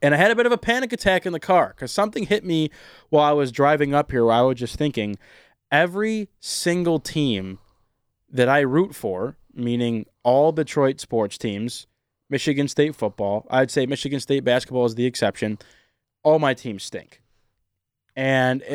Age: 20-39